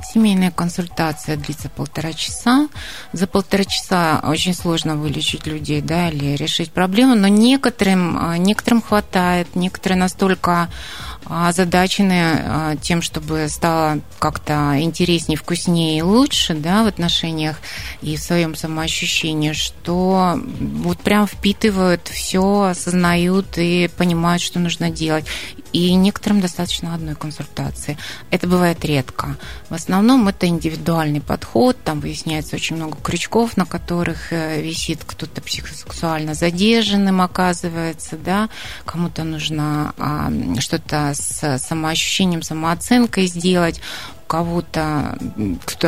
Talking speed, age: 110 wpm, 20-39